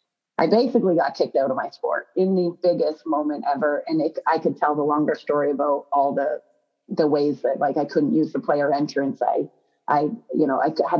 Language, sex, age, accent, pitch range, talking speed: English, female, 30-49, American, 155-200 Hz, 215 wpm